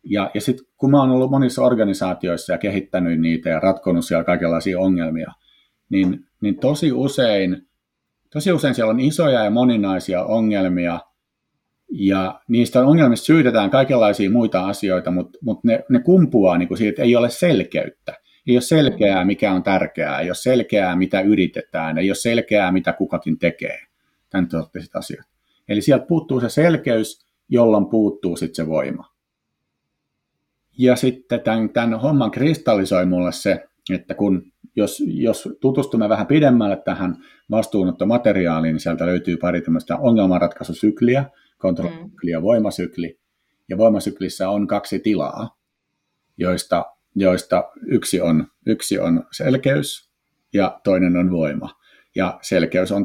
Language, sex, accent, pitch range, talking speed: Finnish, male, native, 90-120 Hz, 135 wpm